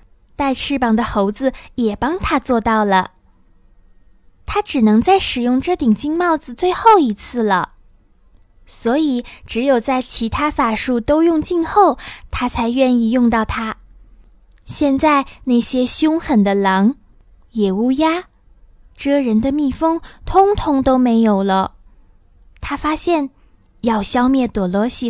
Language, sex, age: Chinese, female, 20-39